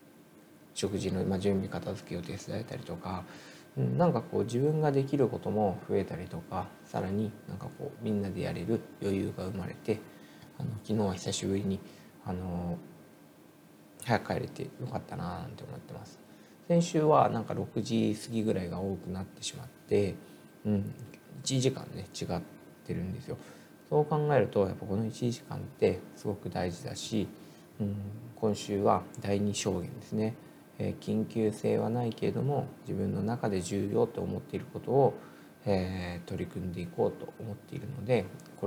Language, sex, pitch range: Japanese, male, 95-130 Hz